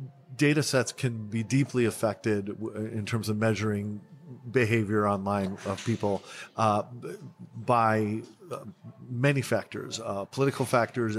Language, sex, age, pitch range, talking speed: English, male, 40-59, 105-125 Hz, 120 wpm